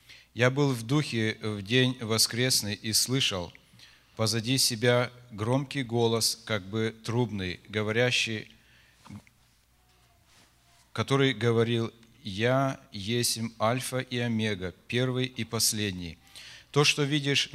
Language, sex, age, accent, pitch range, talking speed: Russian, male, 40-59, native, 110-125 Hz, 105 wpm